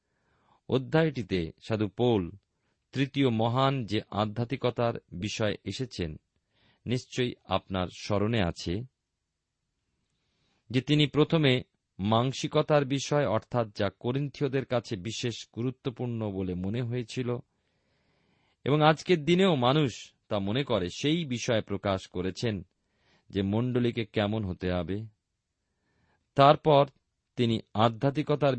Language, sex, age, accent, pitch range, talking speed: Bengali, male, 40-59, native, 100-130 Hz, 95 wpm